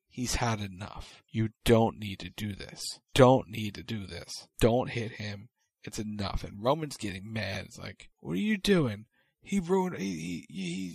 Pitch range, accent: 105-135 Hz, American